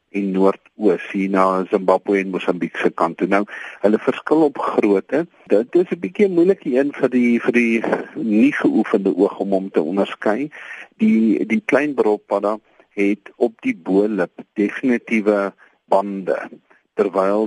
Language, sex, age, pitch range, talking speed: Dutch, male, 50-69, 95-115 Hz, 135 wpm